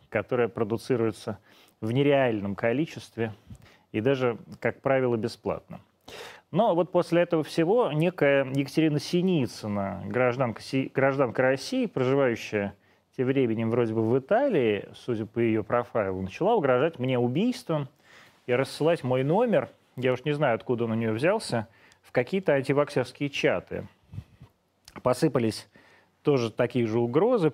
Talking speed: 130 wpm